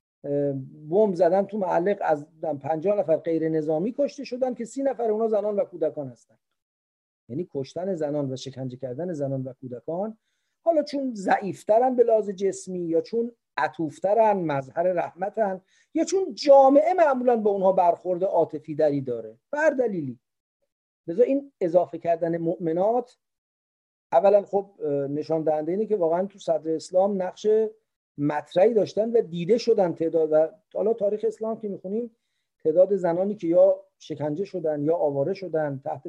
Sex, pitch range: male, 155-220 Hz